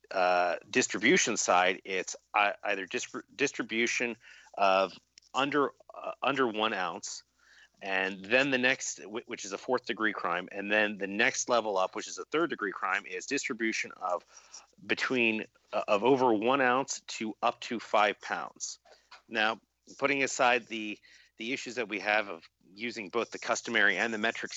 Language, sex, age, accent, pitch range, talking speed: English, male, 40-59, American, 95-125 Hz, 160 wpm